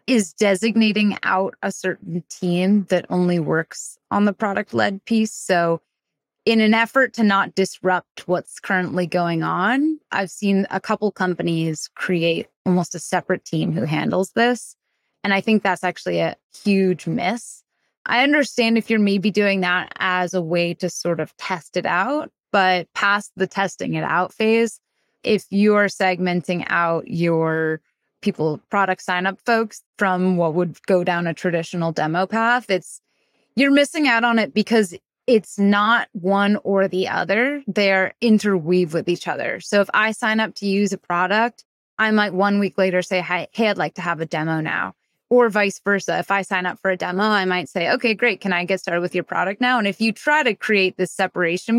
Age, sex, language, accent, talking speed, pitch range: 20-39, female, English, American, 185 wpm, 180-215 Hz